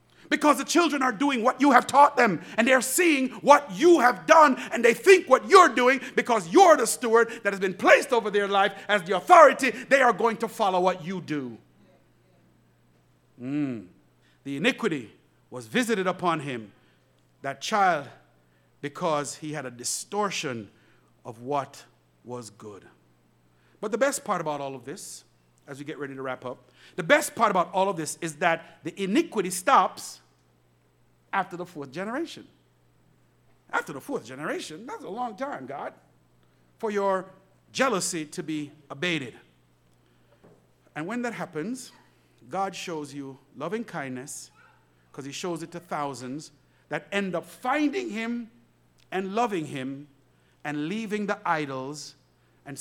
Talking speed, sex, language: 155 wpm, male, English